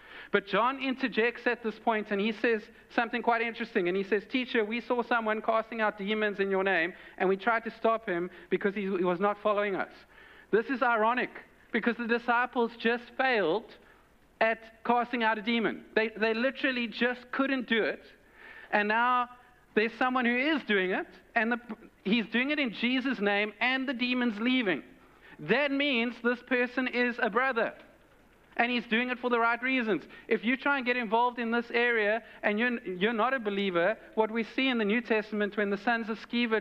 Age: 50-69